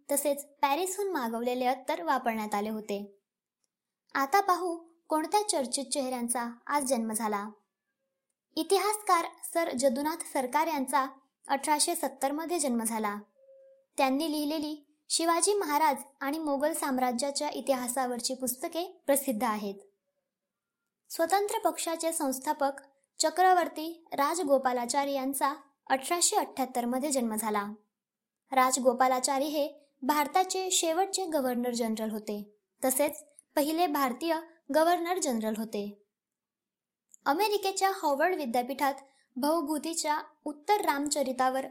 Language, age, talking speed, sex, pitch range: Marathi, 20-39, 90 wpm, male, 255-315 Hz